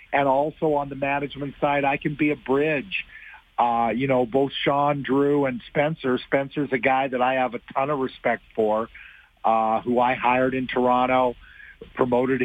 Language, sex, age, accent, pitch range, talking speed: English, male, 50-69, American, 125-155 Hz, 180 wpm